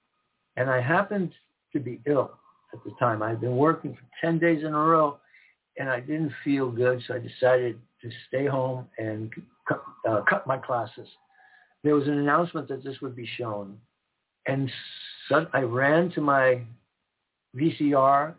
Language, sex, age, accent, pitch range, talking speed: English, male, 60-79, American, 120-145 Hz, 170 wpm